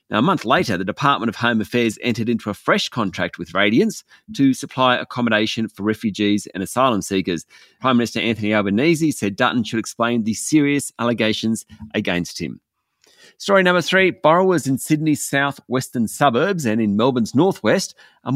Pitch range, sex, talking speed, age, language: 105-140 Hz, male, 165 wpm, 30-49, English